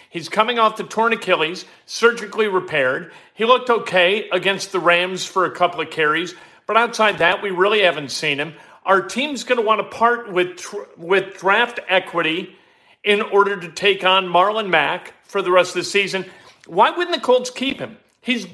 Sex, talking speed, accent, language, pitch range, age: male, 190 wpm, American, English, 195-240 Hz, 50-69